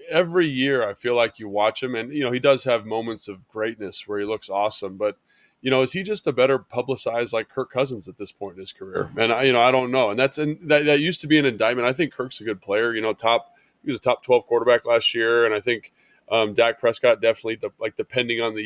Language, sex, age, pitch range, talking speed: English, male, 20-39, 105-130 Hz, 275 wpm